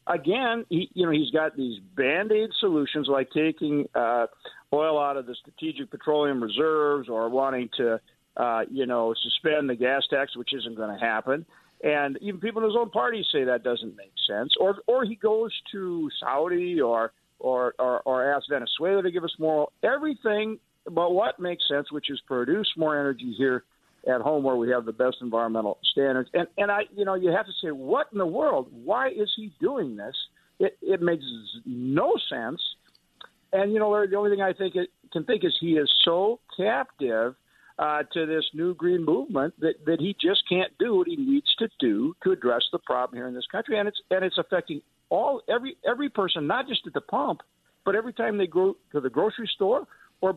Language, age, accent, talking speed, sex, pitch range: English, 50-69, American, 205 wpm, male, 135-205 Hz